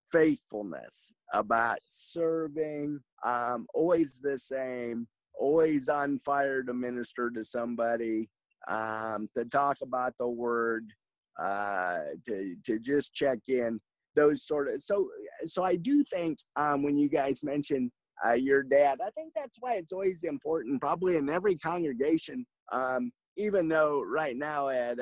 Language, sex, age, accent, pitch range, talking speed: English, male, 30-49, American, 120-150 Hz, 140 wpm